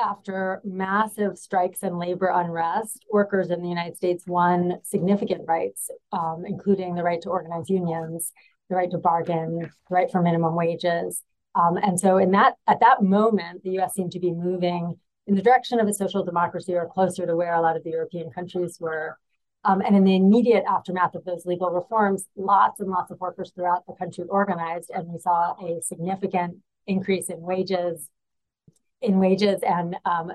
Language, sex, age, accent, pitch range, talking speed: English, female, 30-49, American, 170-195 Hz, 185 wpm